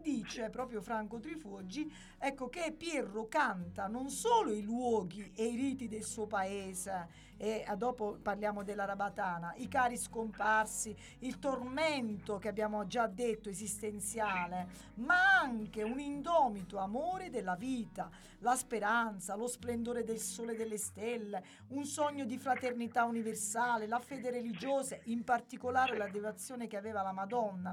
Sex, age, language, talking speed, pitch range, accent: female, 40-59, Italian, 145 wpm, 210-270 Hz, native